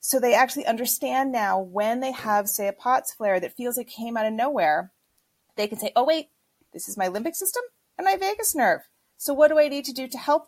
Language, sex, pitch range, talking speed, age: English, female, 195-255 Hz, 240 wpm, 30-49